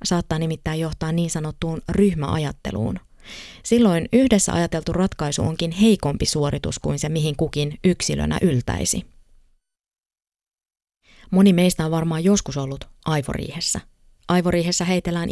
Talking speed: 110 wpm